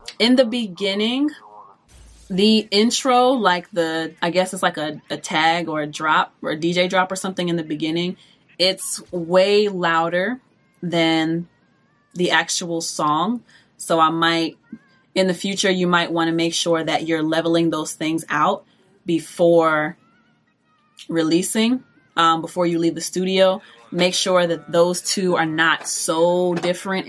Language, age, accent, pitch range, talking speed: English, 20-39, American, 160-190 Hz, 150 wpm